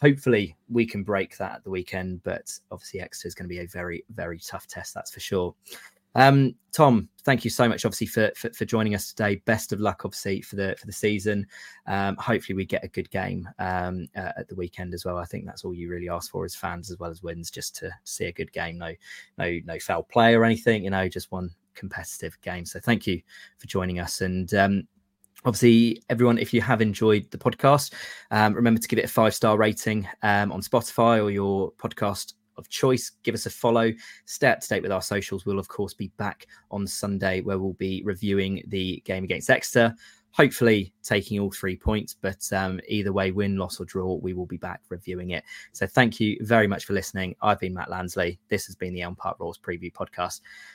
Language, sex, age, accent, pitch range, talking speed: English, male, 20-39, British, 90-110 Hz, 225 wpm